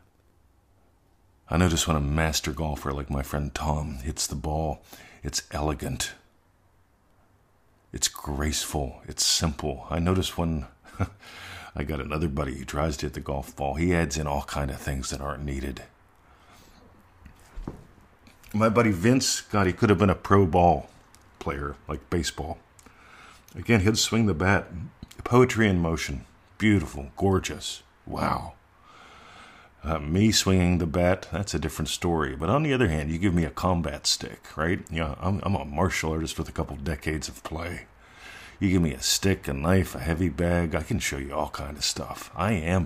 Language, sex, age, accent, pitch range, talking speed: English, male, 50-69, American, 75-95 Hz, 170 wpm